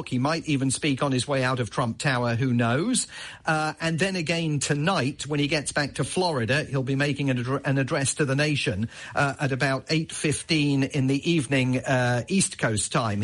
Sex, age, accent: male, 40-59, British